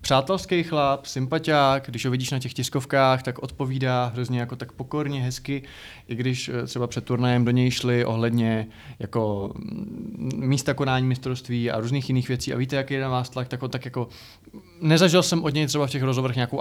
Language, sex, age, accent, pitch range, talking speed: Czech, male, 20-39, native, 120-140 Hz, 190 wpm